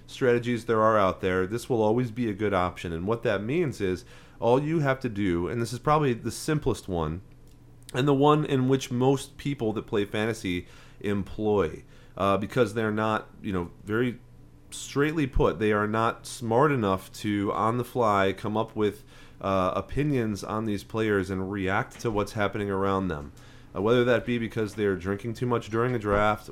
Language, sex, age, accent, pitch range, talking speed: English, male, 30-49, American, 95-120 Hz, 190 wpm